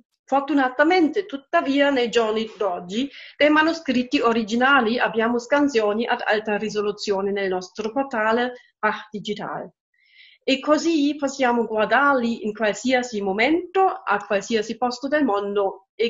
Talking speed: 115 wpm